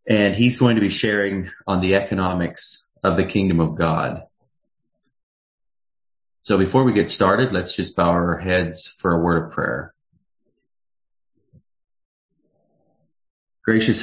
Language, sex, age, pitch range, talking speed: English, male, 30-49, 85-100 Hz, 130 wpm